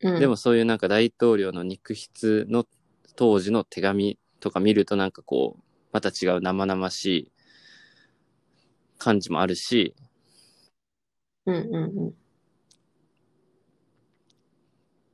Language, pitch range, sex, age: Japanese, 100-130 Hz, male, 20-39